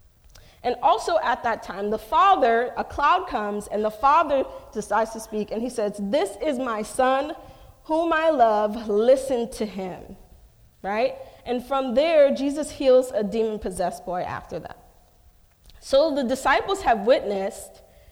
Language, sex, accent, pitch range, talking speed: English, female, American, 200-275 Hz, 150 wpm